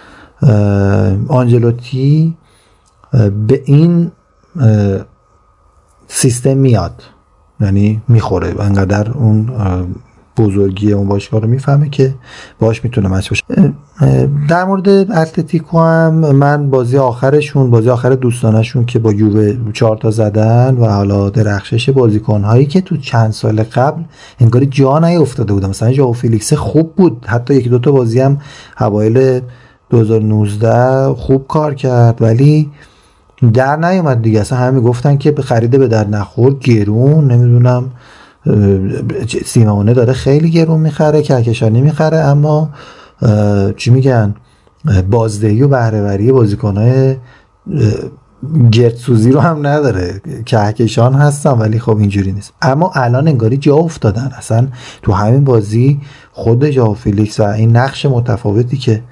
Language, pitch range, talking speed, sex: Persian, 110-140 Hz, 120 wpm, male